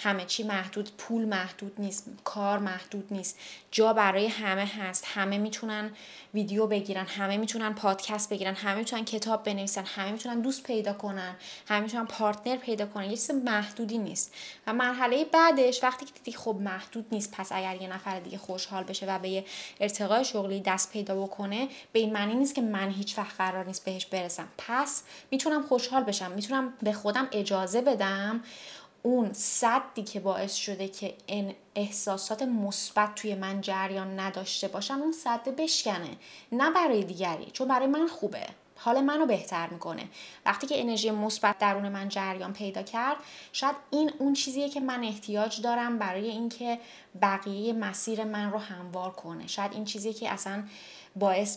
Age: 10-29